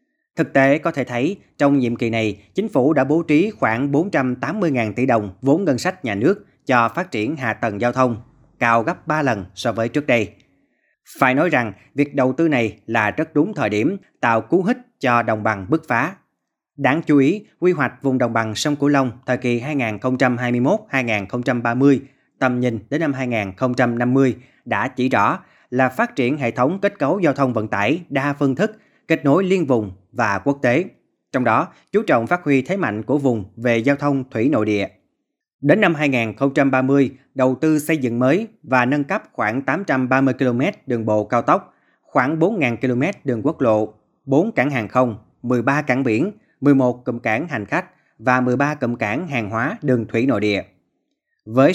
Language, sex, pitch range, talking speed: Vietnamese, male, 115-145 Hz, 190 wpm